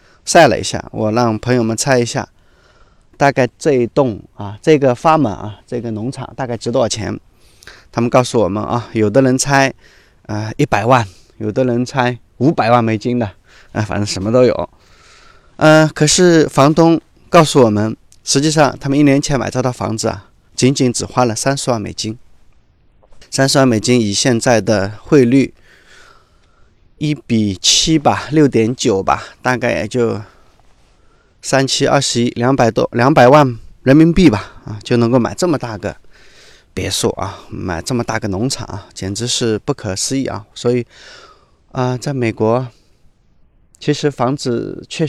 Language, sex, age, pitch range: Chinese, male, 20-39, 110-140 Hz